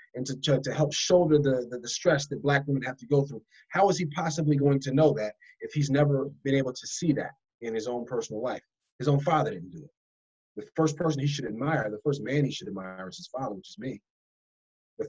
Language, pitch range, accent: English, 115-150 Hz, American